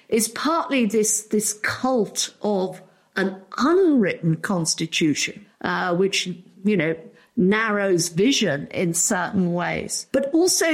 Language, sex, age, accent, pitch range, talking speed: English, female, 50-69, British, 185-240 Hz, 110 wpm